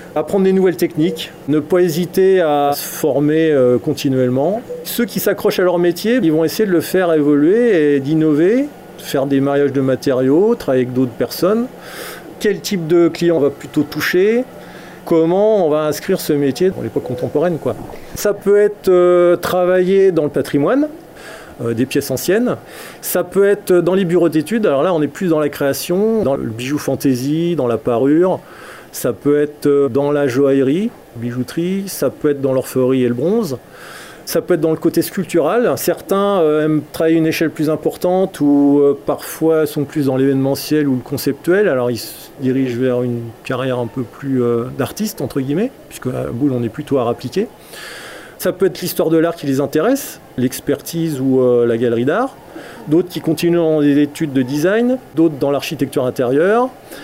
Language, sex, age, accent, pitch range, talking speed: French, male, 40-59, French, 140-180 Hz, 180 wpm